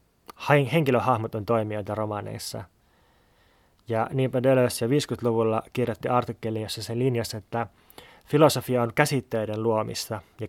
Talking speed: 110 wpm